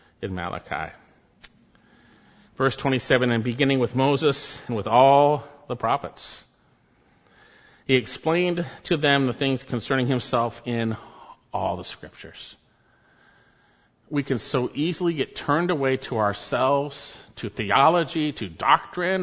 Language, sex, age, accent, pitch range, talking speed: English, male, 50-69, American, 120-155 Hz, 120 wpm